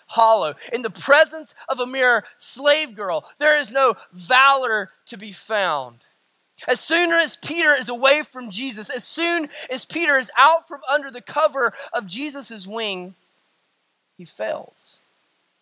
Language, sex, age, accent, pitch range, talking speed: English, male, 20-39, American, 225-300 Hz, 150 wpm